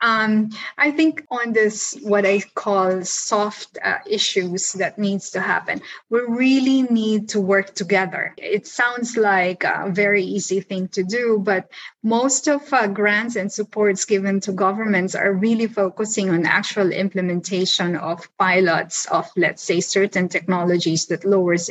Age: 20-39